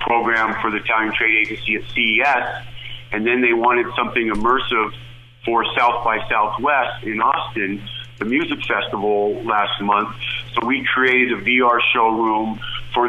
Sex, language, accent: male, English, American